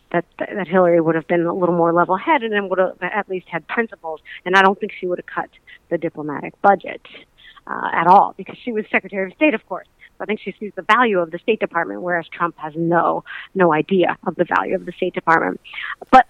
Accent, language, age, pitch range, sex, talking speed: American, English, 50-69, 170-215 Hz, female, 235 wpm